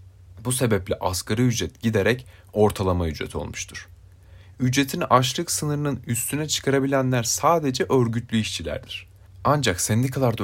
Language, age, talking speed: Turkish, 30-49, 105 wpm